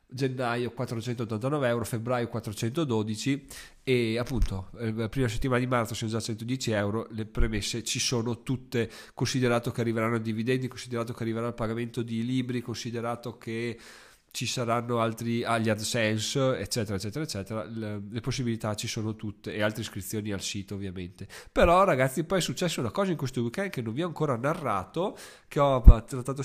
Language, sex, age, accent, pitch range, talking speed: Italian, male, 20-39, native, 115-135 Hz, 170 wpm